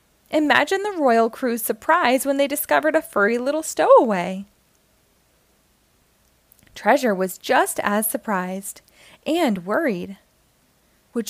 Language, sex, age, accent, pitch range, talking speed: English, female, 20-39, American, 215-295 Hz, 105 wpm